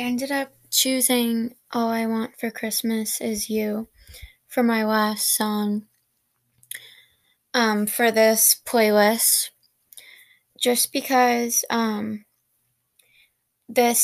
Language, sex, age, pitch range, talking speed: English, female, 10-29, 210-240 Hz, 100 wpm